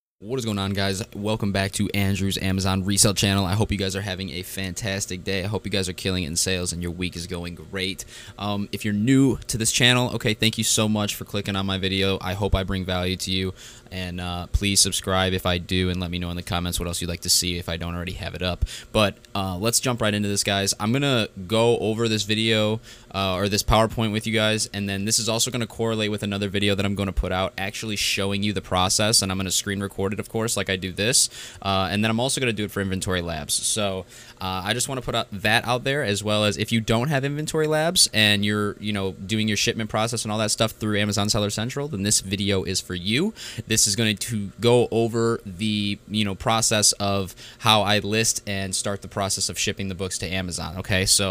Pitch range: 95-110 Hz